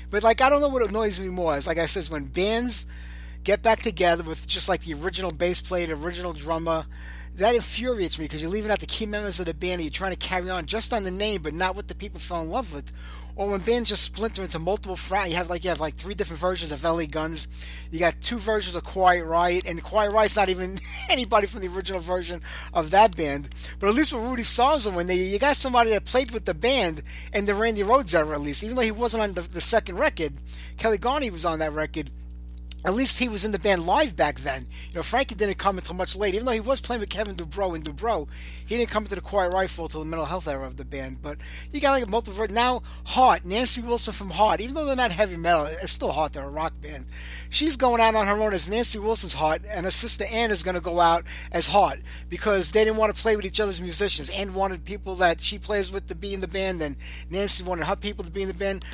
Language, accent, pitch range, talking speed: English, American, 165-215 Hz, 260 wpm